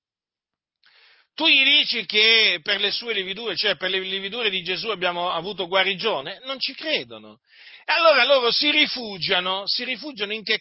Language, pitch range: Italian, 175-255 Hz